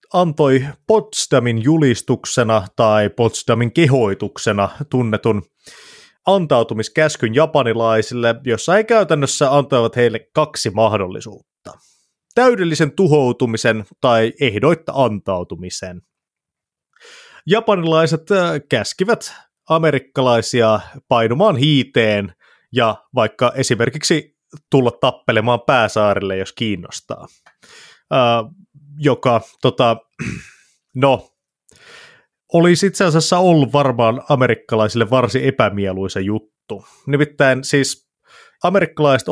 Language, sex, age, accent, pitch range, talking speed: Finnish, male, 30-49, native, 110-150 Hz, 75 wpm